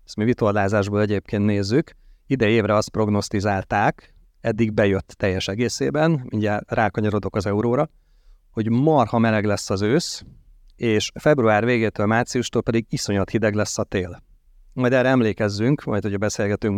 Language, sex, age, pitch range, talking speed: Hungarian, male, 30-49, 105-120 Hz, 135 wpm